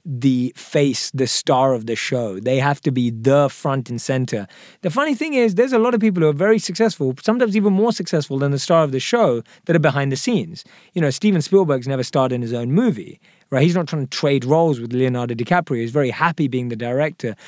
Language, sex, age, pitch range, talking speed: English, male, 20-39, 135-190 Hz, 235 wpm